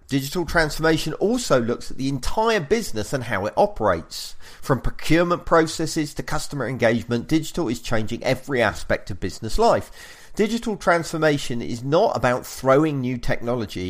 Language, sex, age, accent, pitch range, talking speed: English, male, 40-59, British, 105-160 Hz, 145 wpm